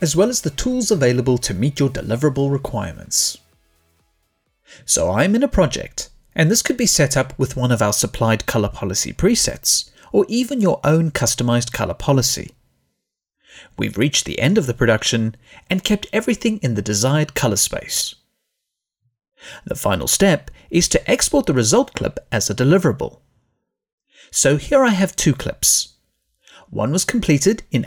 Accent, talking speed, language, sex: British, 160 wpm, English, male